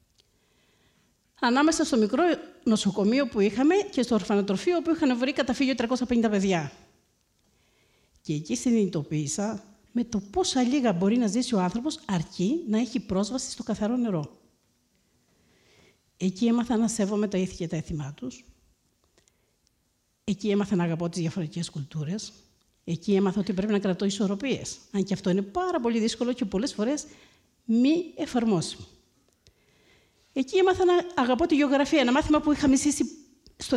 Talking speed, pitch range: 145 wpm, 185-250 Hz